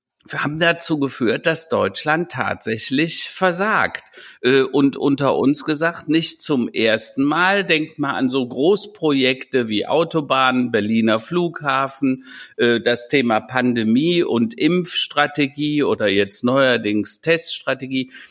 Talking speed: 110 wpm